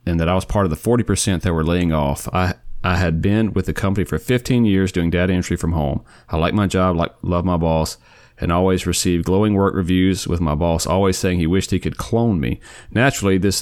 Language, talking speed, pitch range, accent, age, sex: English, 240 wpm, 85-100 Hz, American, 40-59, male